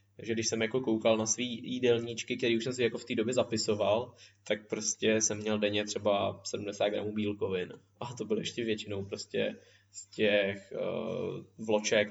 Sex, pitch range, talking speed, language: male, 105-120 Hz, 180 wpm, Czech